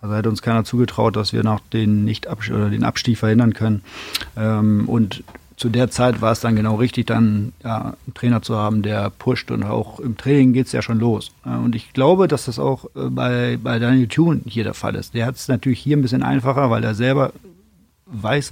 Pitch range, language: 110-125 Hz, German